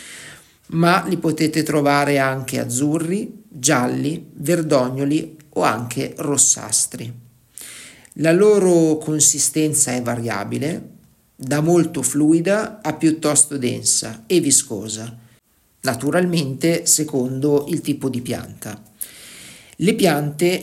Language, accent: Italian, native